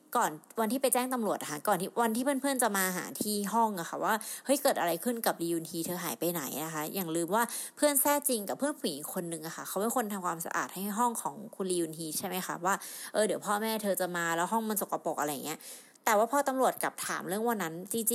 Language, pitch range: Thai, 180-250 Hz